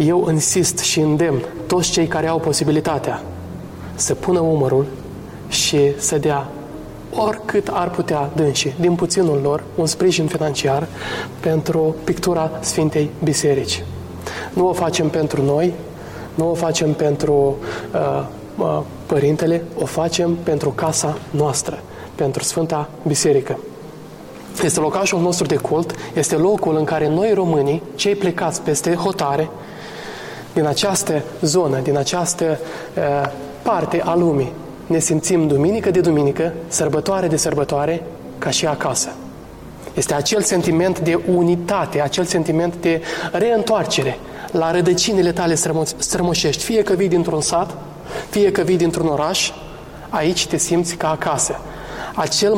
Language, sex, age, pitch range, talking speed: Romanian, male, 20-39, 150-175 Hz, 130 wpm